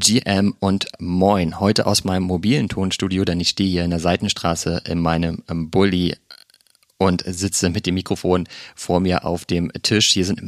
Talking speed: 170 wpm